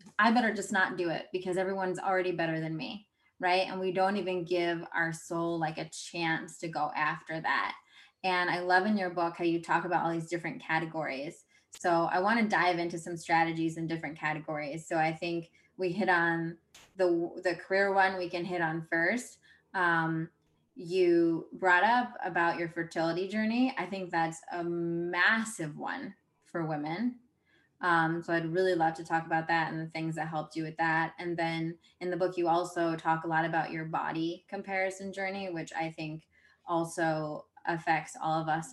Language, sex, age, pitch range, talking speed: English, female, 20-39, 165-190 Hz, 190 wpm